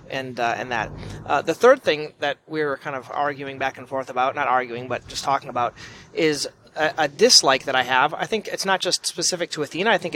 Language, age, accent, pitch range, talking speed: English, 30-49, American, 135-175 Hz, 240 wpm